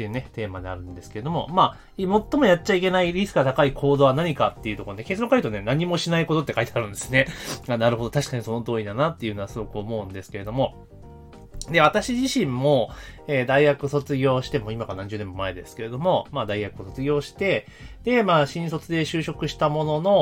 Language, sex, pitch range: Japanese, male, 105-160 Hz